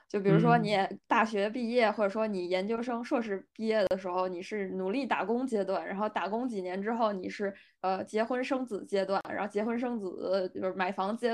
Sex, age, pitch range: female, 20-39, 195-250 Hz